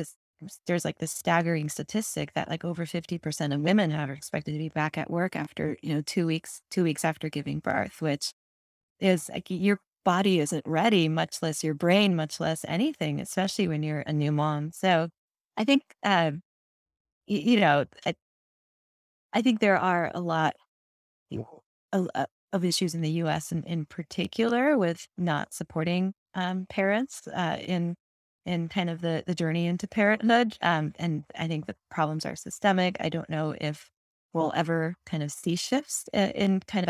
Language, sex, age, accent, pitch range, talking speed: English, female, 20-39, American, 155-185 Hz, 175 wpm